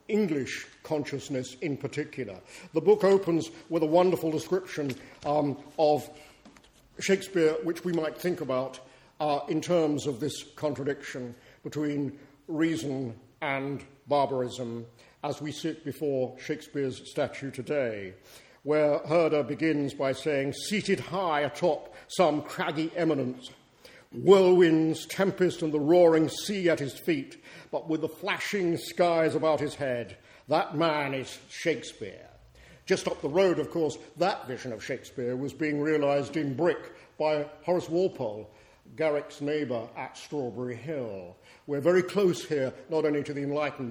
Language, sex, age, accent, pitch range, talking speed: English, male, 50-69, British, 140-175 Hz, 135 wpm